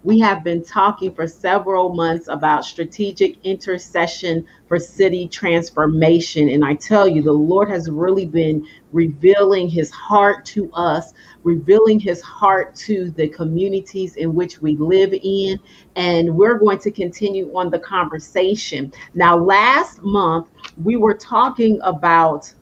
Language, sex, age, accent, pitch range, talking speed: English, female, 40-59, American, 160-195 Hz, 140 wpm